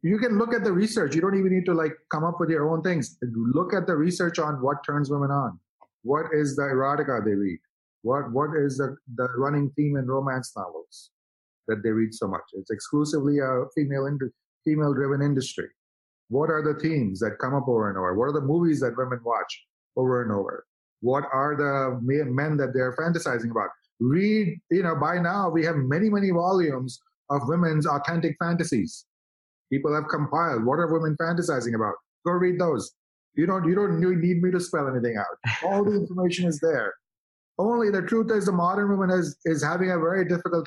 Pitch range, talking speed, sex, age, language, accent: 135-175 Hz, 200 wpm, male, 30-49, English, Indian